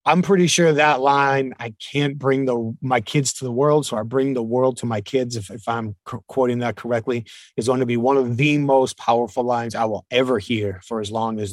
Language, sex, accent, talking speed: English, male, American, 245 wpm